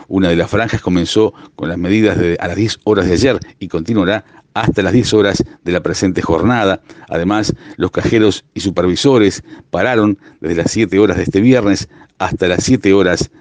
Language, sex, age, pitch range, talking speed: Spanish, male, 50-69, 90-110 Hz, 190 wpm